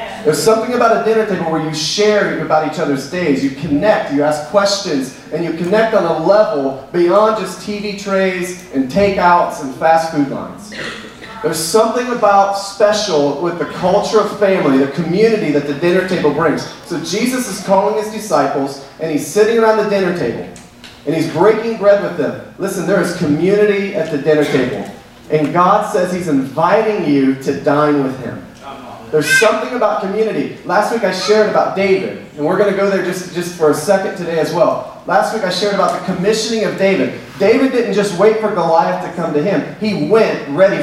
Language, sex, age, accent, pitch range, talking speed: English, male, 40-59, American, 155-215 Hz, 195 wpm